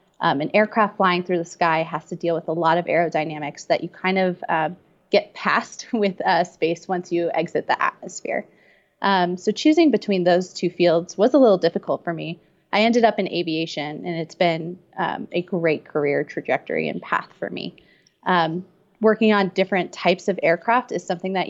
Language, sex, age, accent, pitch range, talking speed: English, female, 30-49, American, 170-205 Hz, 195 wpm